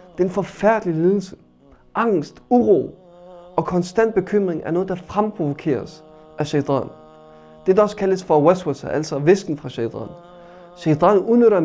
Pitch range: 145-195 Hz